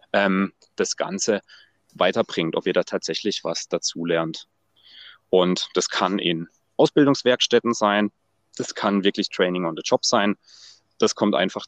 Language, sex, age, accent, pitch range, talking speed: German, male, 30-49, German, 90-110 Hz, 135 wpm